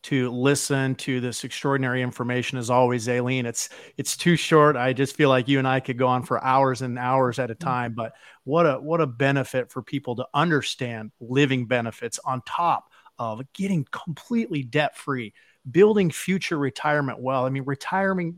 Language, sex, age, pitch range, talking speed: English, male, 40-59, 120-140 Hz, 180 wpm